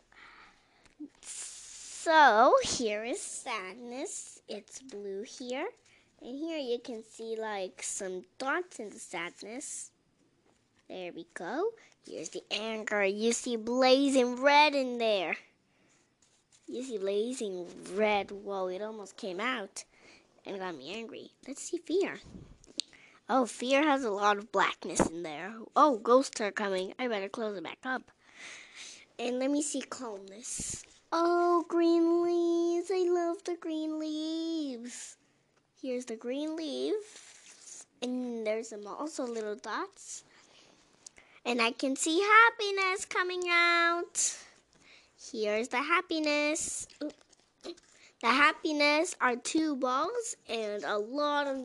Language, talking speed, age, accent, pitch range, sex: English, 125 wpm, 10-29, American, 220-330 Hz, female